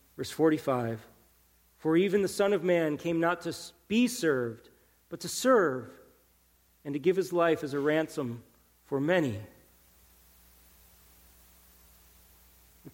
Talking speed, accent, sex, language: 125 wpm, American, male, English